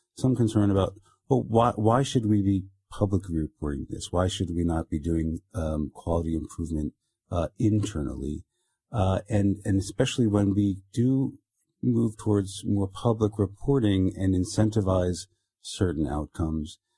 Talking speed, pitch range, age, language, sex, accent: 140 wpm, 85-105 Hz, 50-69, English, male, American